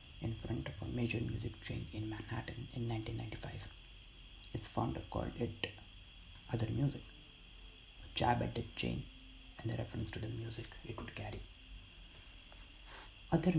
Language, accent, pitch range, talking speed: English, Indian, 90-120 Hz, 140 wpm